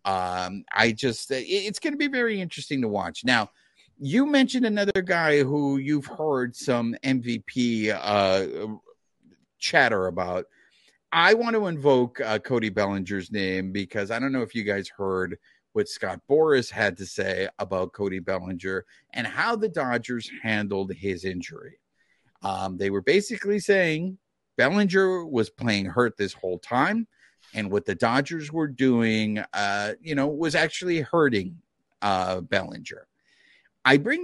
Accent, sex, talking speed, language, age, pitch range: American, male, 145 wpm, English, 50-69, 100-165 Hz